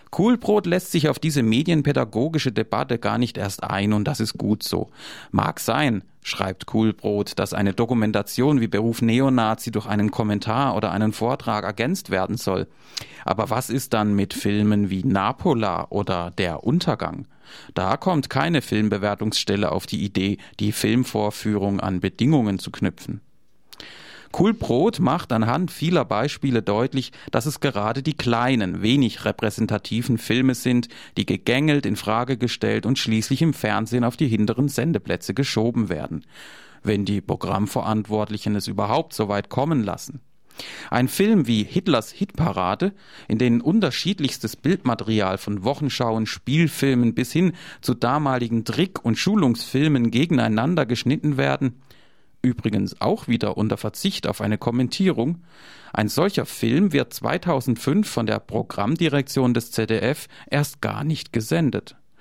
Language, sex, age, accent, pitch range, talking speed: German, male, 40-59, German, 105-140 Hz, 140 wpm